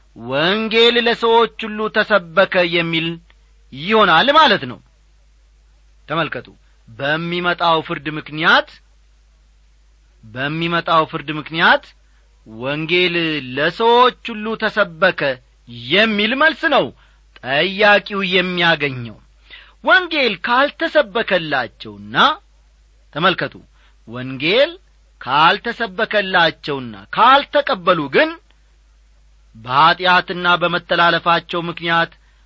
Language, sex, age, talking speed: Amharic, male, 40-59, 65 wpm